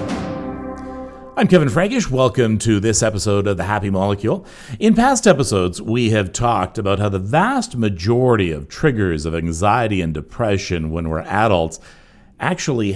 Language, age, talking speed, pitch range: English, 50-69, 150 wpm, 90-120 Hz